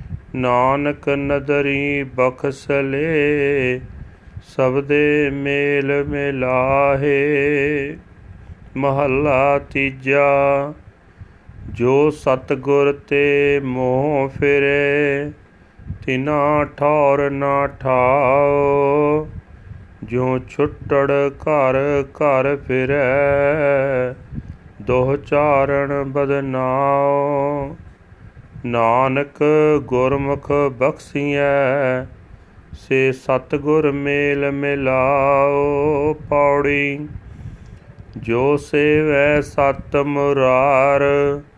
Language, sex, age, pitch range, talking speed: Punjabi, male, 40-59, 130-145 Hz, 55 wpm